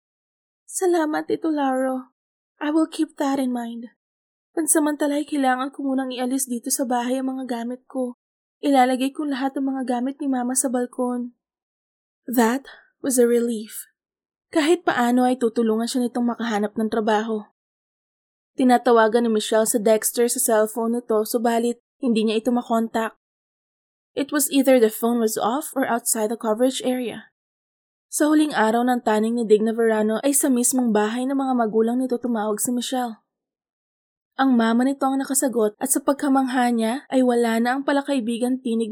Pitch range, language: 230-270 Hz, Filipino